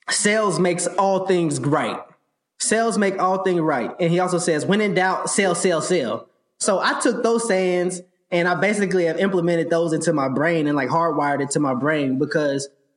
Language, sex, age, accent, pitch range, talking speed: English, male, 20-39, American, 155-200 Hz, 200 wpm